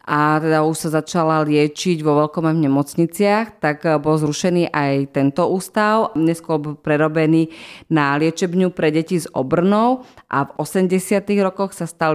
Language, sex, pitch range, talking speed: Slovak, female, 150-170 Hz, 150 wpm